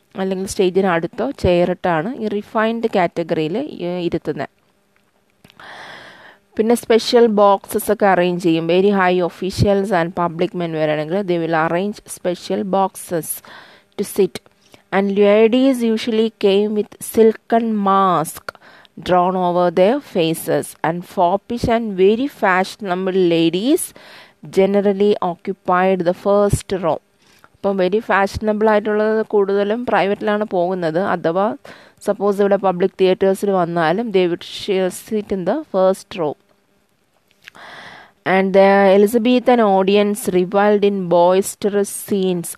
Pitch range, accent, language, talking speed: 175-205 Hz, Indian, English, 115 wpm